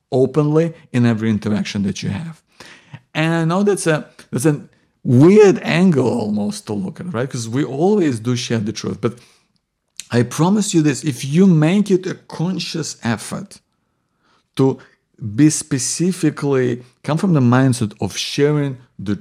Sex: male